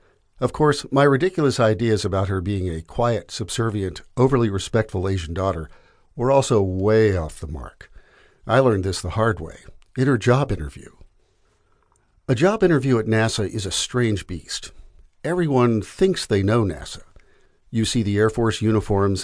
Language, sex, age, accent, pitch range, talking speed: English, male, 50-69, American, 90-125 Hz, 160 wpm